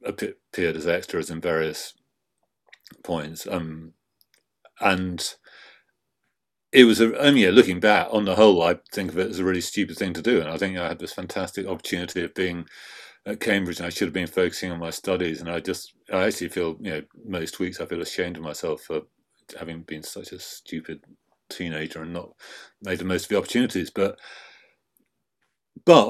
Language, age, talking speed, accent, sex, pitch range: English, 40-59, 190 wpm, British, male, 85-110 Hz